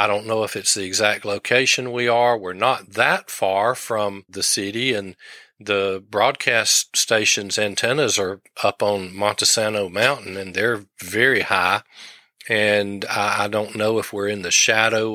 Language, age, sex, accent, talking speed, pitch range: English, 40-59, male, American, 160 wpm, 100-120 Hz